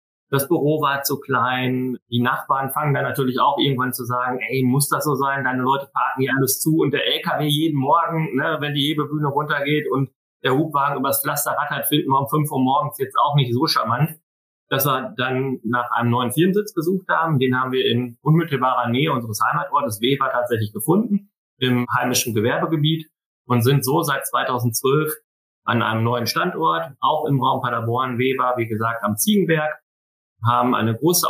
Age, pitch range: 30-49, 120-145 Hz